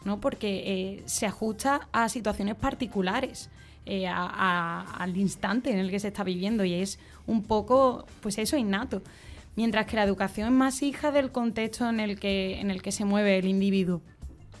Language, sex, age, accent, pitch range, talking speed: Spanish, female, 20-39, Spanish, 195-245 Hz, 185 wpm